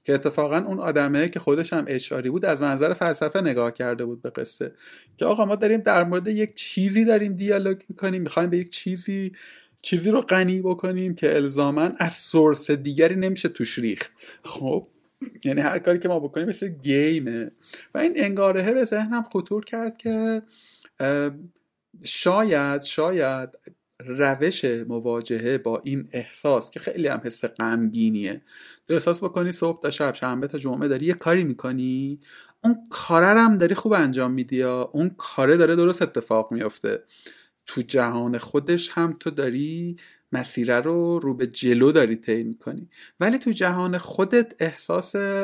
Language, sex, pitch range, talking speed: Persian, male, 130-190 Hz, 155 wpm